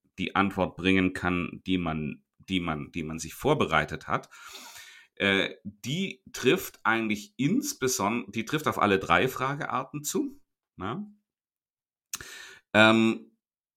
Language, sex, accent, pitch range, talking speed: German, male, German, 85-110 Hz, 120 wpm